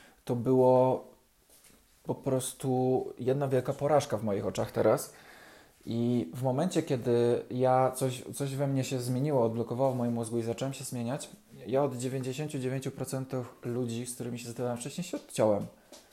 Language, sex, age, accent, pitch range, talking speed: Polish, male, 20-39, native, 115-140 Hz, 155 wpm